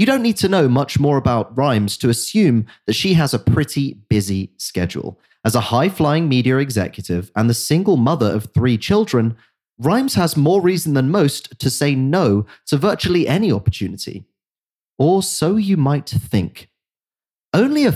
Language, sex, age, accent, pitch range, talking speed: English, male, 30-49, British, 110-175 Hz, 165 wpm